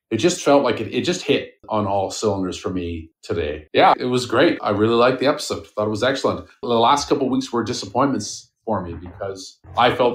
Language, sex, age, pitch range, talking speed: English, male, 40-59, 95-125 Hz, 230 wpm